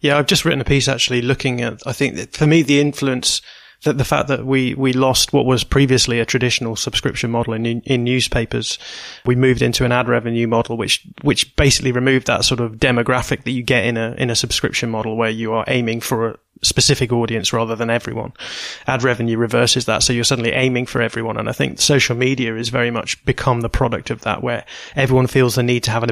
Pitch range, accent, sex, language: 115-130 Hz, British, male, English